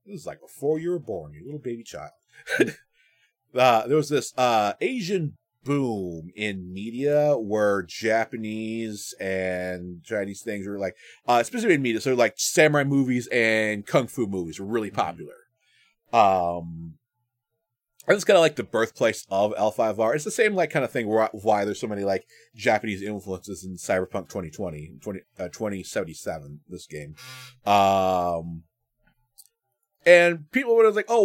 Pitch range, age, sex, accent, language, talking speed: 105-155 Hz, 30-49, male, American, English, 155 wpm